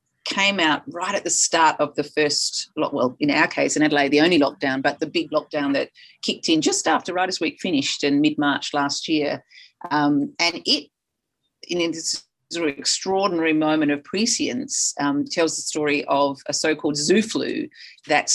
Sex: female